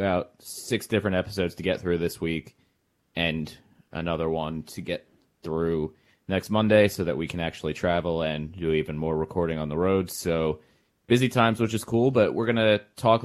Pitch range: 80-105 Hz